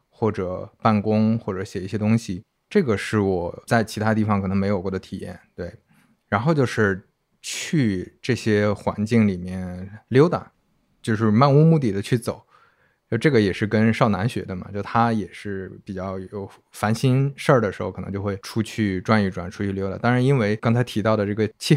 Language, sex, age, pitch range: Chinese, male, 20-39, 100-120 Hz